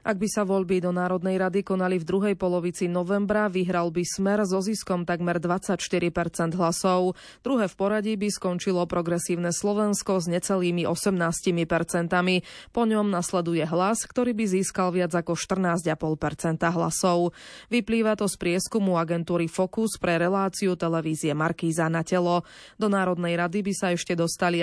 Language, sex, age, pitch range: Slovak, female, 20-39, 170-200 Hz